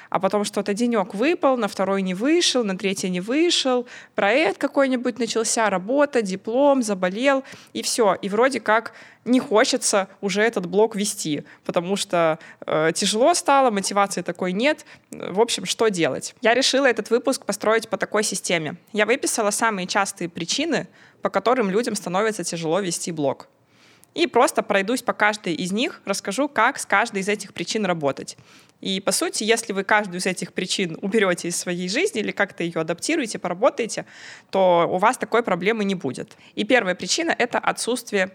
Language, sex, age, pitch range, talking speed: Russian, female, 20-39, 185-240 Hz, 165 wpm